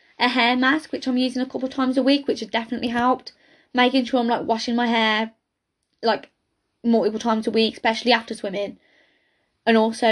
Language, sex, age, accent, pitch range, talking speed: English, female, 10-29, British, 225-285 Hz, 195 wpm